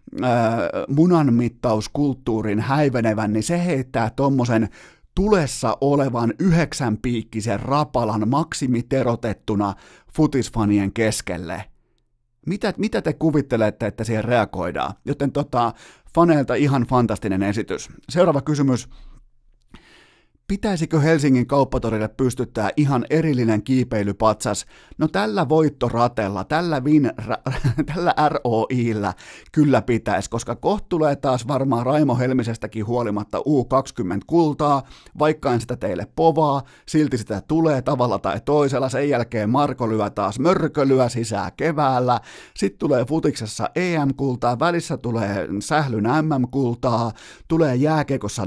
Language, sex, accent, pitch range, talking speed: Finnish, male, native, 115-150 Hz, 105 wpm